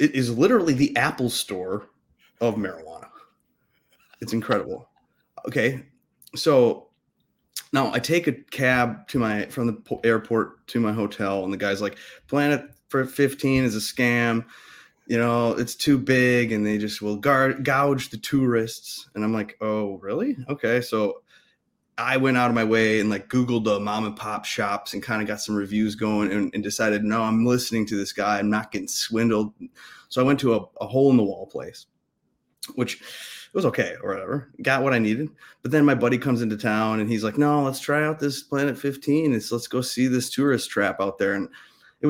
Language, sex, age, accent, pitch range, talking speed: English, male, 30-49, American, 105-130 Hz, 195 wpm